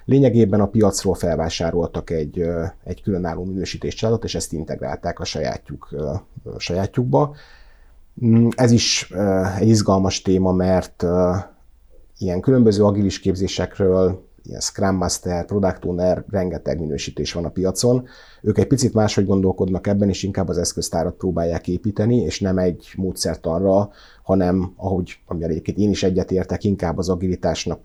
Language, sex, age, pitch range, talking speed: Hungarian, male, 30-49, 85-105 Hz, 130 wpm